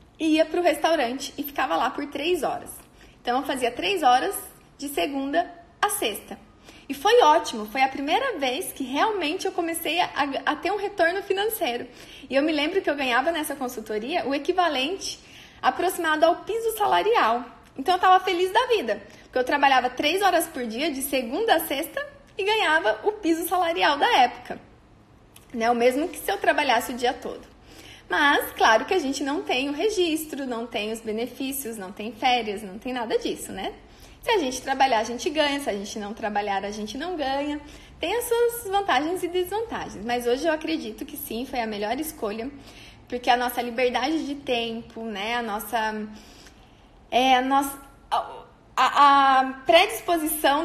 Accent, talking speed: Brazilian, 180 wpm